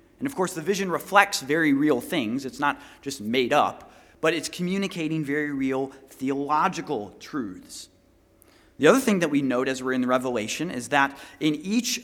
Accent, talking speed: American, 180 wpm